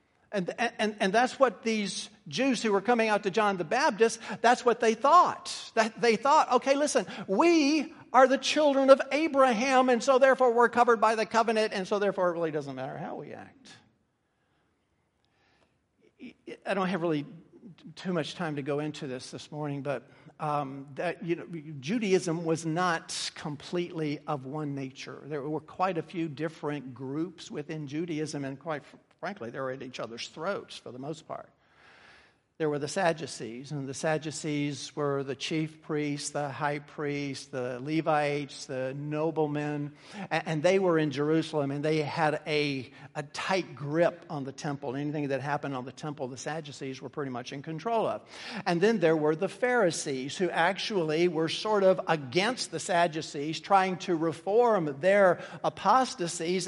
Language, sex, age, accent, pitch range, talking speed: English, male, 50-69, American, 145-200 Hz, 170 wpm